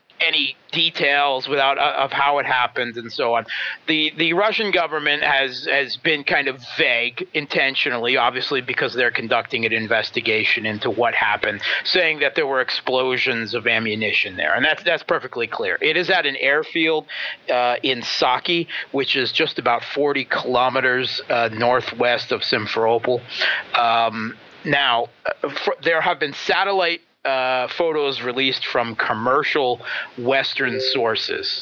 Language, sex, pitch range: English, male, 125-155 Hz